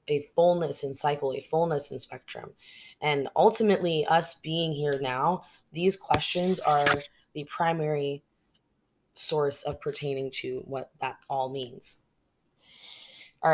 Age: 20-39